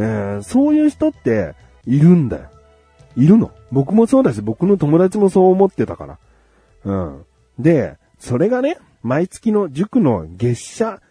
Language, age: Japanese, 30-49